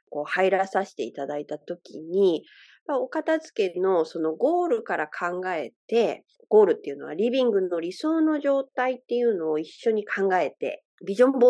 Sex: female